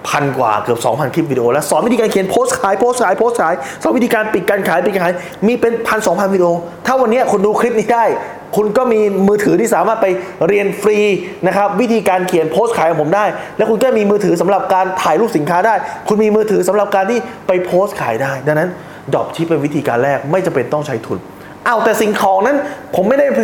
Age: 20-39